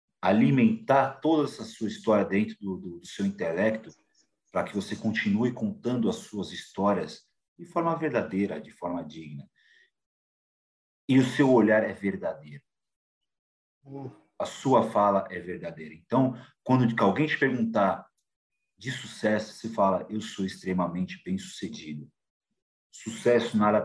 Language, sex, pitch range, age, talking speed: Portuguese, male, 95-150 Hz, 40-59, 130 wpm